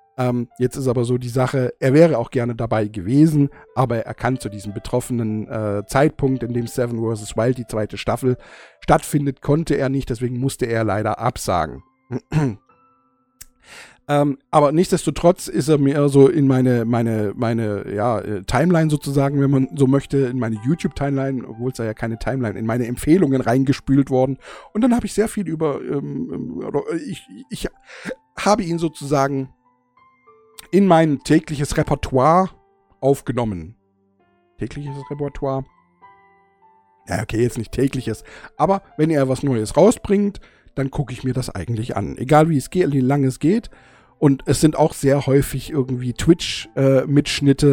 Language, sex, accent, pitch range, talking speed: German, male, German, 115-145 Hz, 160 wpm